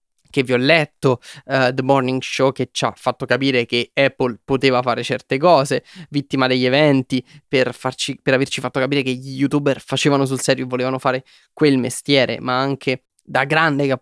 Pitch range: 130-145 Hz